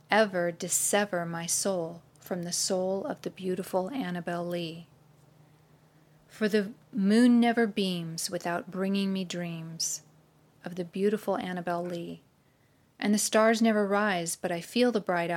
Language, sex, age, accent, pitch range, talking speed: English, female, 40-59, American, 170-200 Hz, 140 wpm